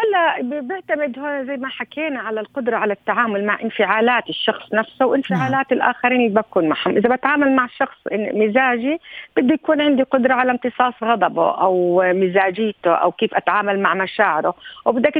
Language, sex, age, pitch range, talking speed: Arabic, female, 50-69, 210-270 Hz, 155 wpm